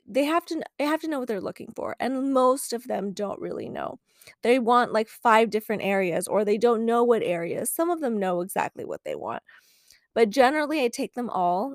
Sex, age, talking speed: female, 20-39, 225 wpm